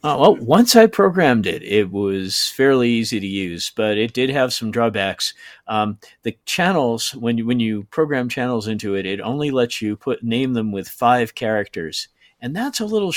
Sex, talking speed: male, 195 wpm